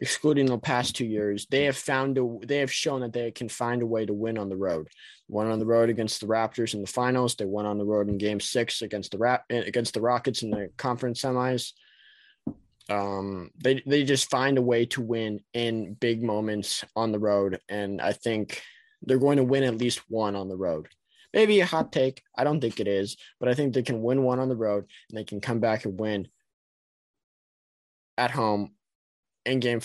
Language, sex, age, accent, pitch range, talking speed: English, male, 20-39, American, 105-125 Hz, 220 wpm